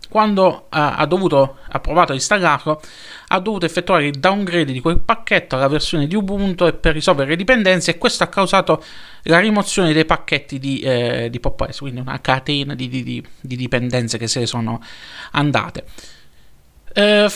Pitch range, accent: 130-175 Hz, native